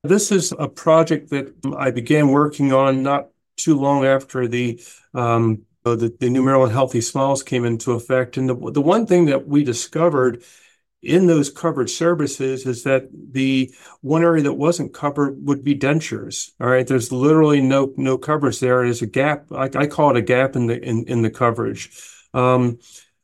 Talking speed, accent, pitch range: 185 wpm, American, 125-145 Hz